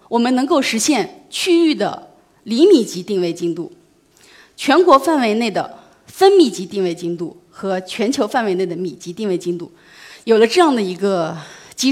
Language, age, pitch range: Chinese, 30-49, 185-255 Hz